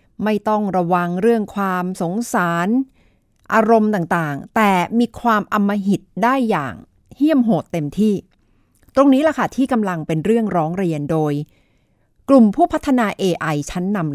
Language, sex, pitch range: Thai, female, 165-220 Hz